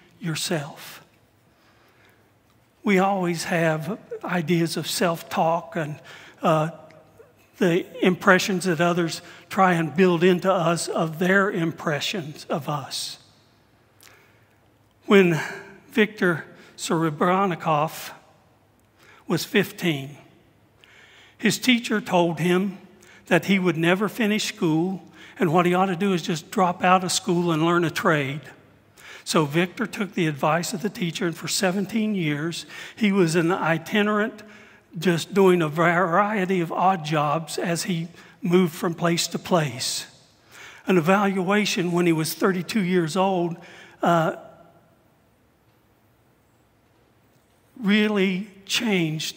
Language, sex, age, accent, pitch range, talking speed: English, male, 60-79, American, 160-190 Hz, 115 wpm